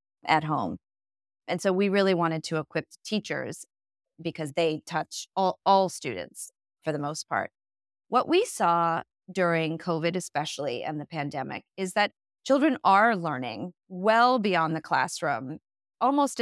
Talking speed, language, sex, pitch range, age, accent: 145 wpm, English, female, 160-215 Hz, 30-49, American